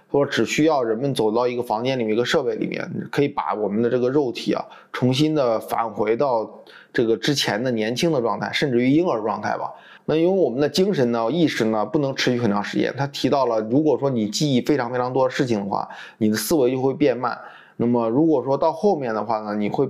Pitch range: 115-145 Hz